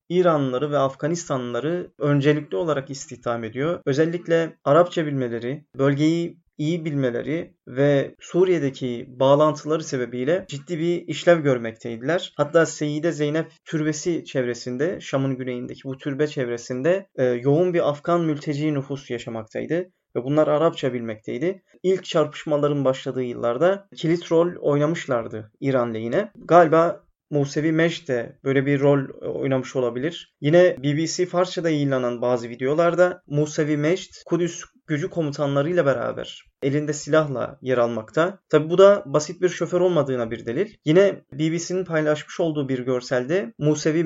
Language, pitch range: Turkish, 135-170 Hz